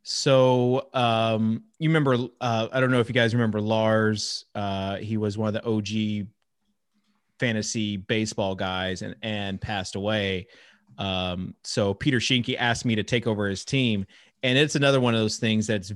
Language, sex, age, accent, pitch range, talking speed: English, male, 30-49, American, 105-125 Hz, 175 wpm